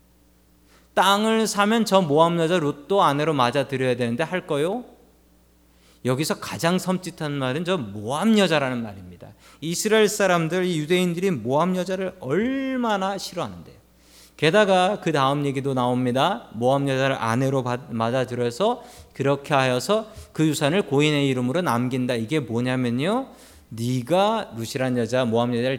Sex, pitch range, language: male, 115-170 Hz, Korean